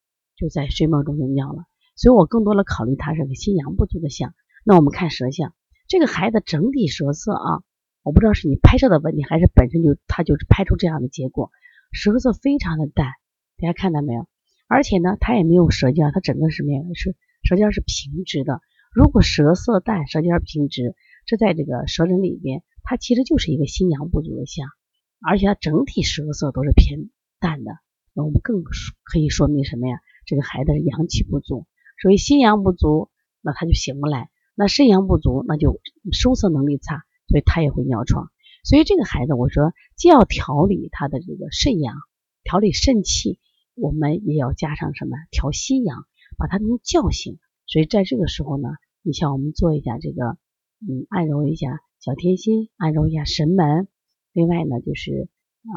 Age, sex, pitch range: 30-49, female, 145-195 Hz